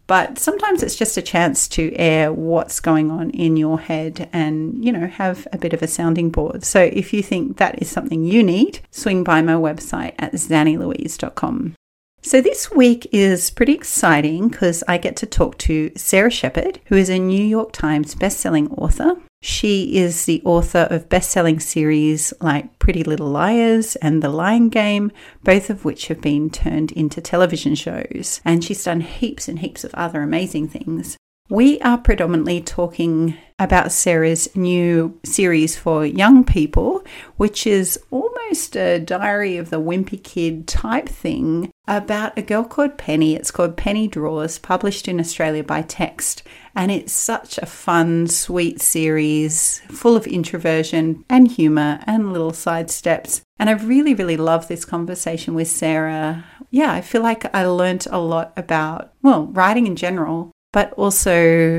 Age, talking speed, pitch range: 40-59, 165 wpm, 160-210 Hz